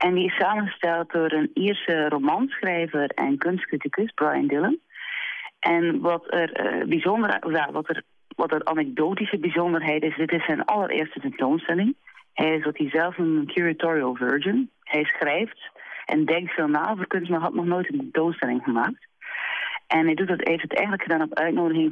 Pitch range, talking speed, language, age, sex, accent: 155-185 Hz, 170 wpm, Dutch, 40-59, female, Dutch